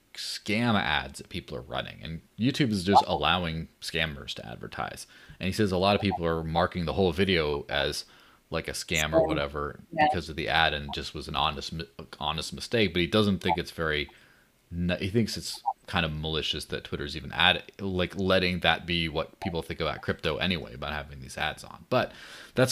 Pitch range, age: 80-105 Hz, 30-49